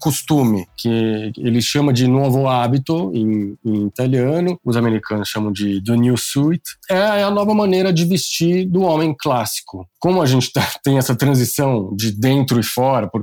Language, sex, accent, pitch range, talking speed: Portuguese, male, Brazilian, 110-145 Hz, 170 wpm